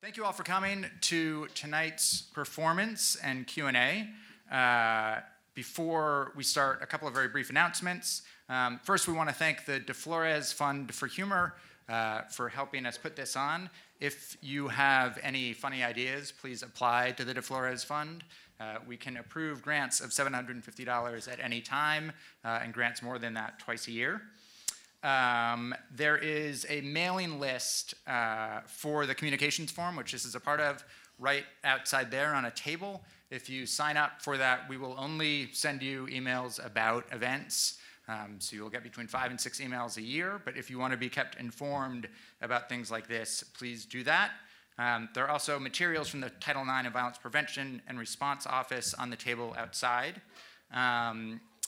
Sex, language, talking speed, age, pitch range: male, English, 180 wpm, 30-49, 120-150 Hz